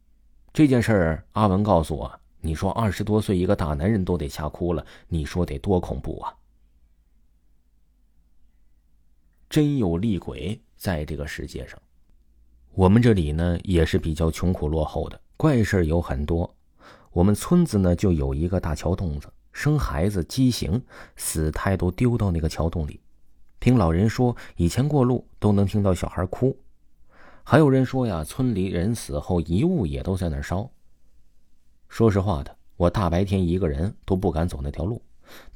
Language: Chinese